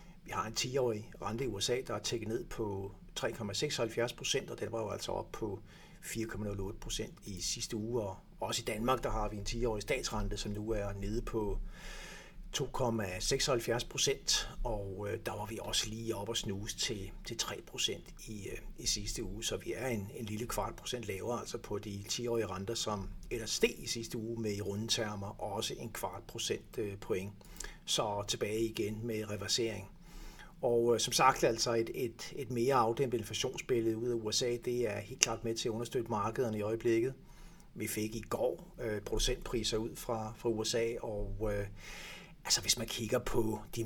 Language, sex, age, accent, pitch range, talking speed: Danish, male, 60-79, native, 105-120 Hz, 180 wpm